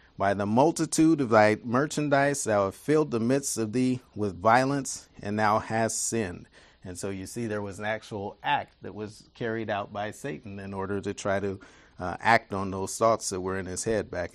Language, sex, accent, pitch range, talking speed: English, male, American, 95-115 Hz, 210 wpm